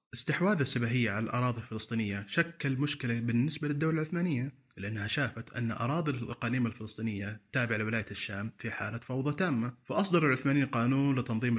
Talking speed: 140 wpm